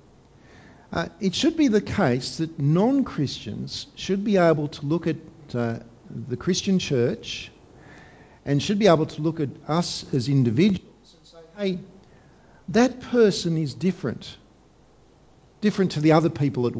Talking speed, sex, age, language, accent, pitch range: 145 wpm, male, 50-69, English, Australian, 130-185 Hz